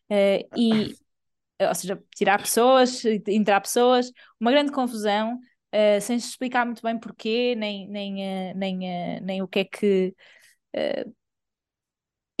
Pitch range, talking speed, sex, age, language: 200-250 Hz, 140 wpm, female, 20-39, Portuguese